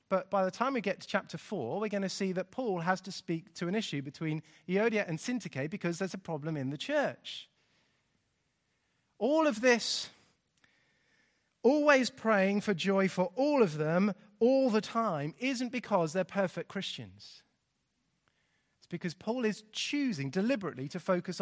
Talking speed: 165 wpm